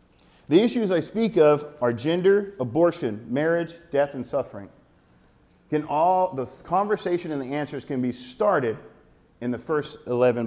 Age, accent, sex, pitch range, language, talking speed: 40-59, American, male, 135-180 Hz, English, 150 wpm